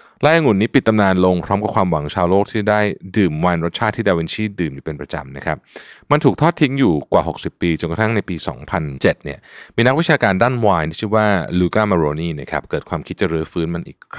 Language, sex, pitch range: Thai, male, 80-105 Hz